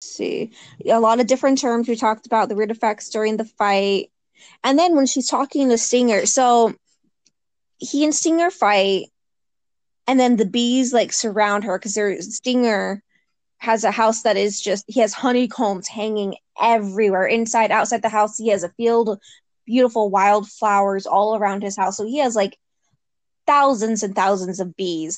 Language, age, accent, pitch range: English, 20-39, American, 200-235 Hz